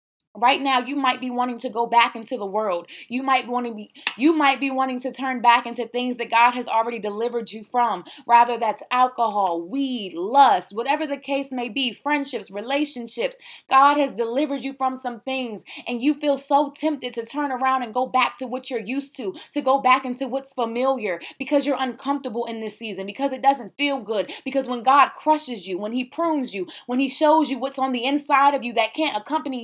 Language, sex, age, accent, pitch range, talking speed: English, female, 20-39, American, 225-275 Hz, 215 wpm